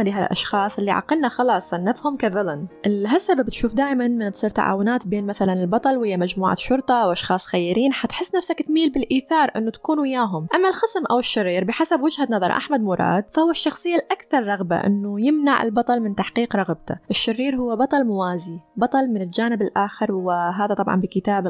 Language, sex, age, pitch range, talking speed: Arabic, female, 20-39, 195-265 Hz, 160 wpm